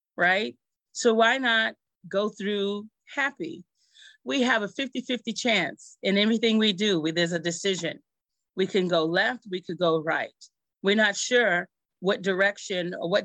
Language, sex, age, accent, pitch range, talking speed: English, female, 30-49, American, 175-245 Hz, 155 wpm